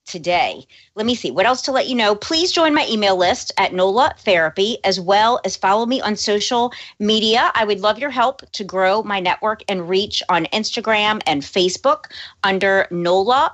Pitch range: 180-215 Hz